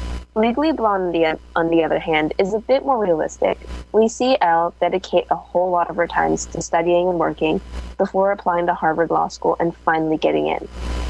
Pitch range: 160-195 Hz